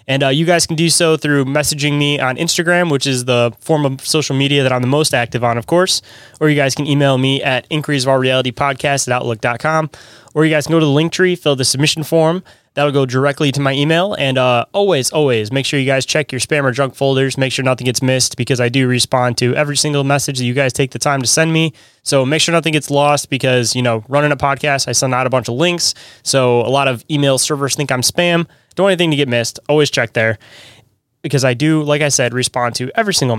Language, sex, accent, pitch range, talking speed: English, male, American, 130-155 Hz, 255 wpm